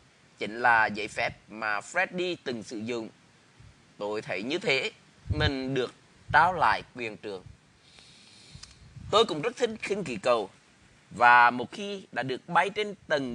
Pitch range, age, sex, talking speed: 125-170 Hz, 20-39, male, 155 wpm